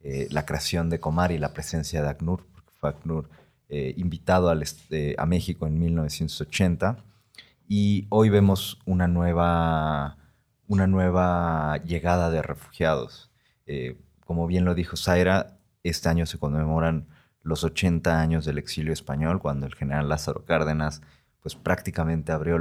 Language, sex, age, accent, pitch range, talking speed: Spanish, male, 30-49, Mexican, 75-90 Hz, 145 wpm